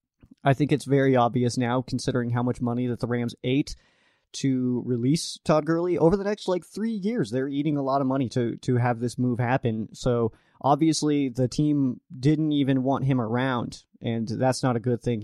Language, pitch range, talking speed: English, 120-140 Hz, 200 wpm